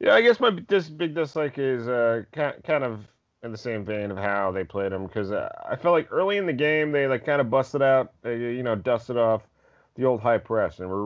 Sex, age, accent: male, 30-49, American